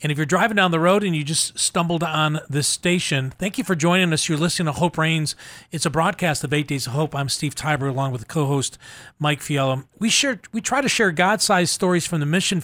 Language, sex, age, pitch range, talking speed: English, male, 40-59, 145-195 Hz, 240 wpm